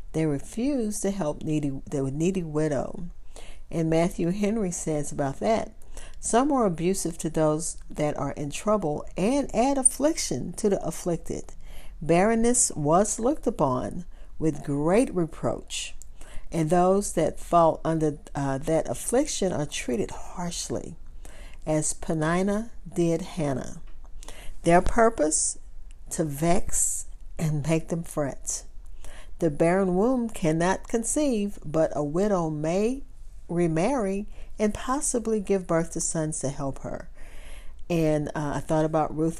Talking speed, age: 125 wpm, 50-69